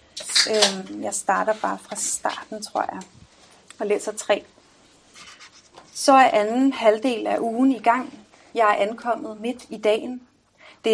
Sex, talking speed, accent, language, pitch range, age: female, 135 wpm, native, Danish, 205-245 Hz, 30-49